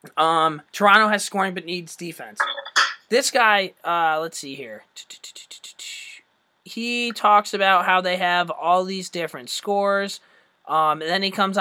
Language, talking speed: English, 145 wpm